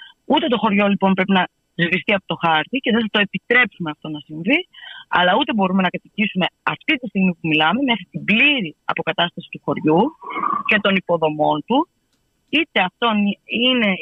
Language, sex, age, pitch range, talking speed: Greek, female, 30-49, 180-250 Hz, 170 wpm